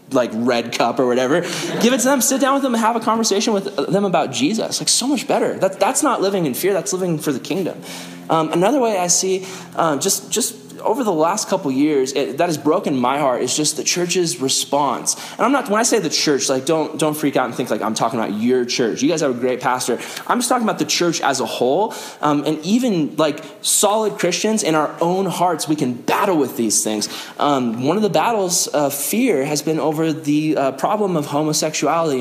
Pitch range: 145-200 Hz